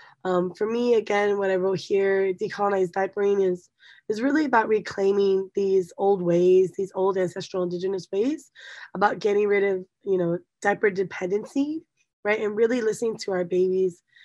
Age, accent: 20-39, American